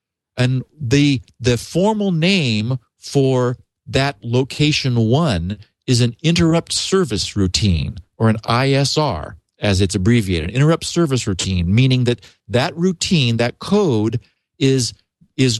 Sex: male